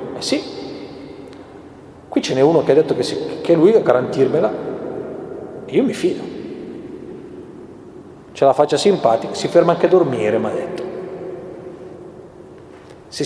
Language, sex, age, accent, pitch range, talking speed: Italian, male, 40-59, native, 145-230 Hz, 140 wpm